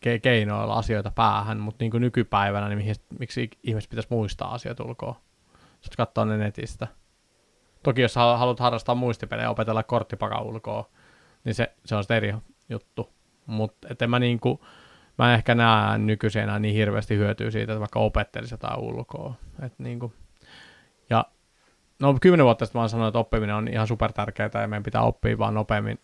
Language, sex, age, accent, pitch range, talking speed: Finnish, male, 20-39, native, 105-120 Hz, 160 wpm